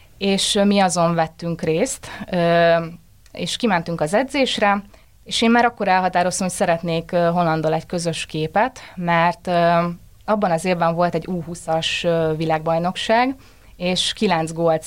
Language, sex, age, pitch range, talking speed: Hungarian, female, 20-39, 165-195 Hz, 125 wpm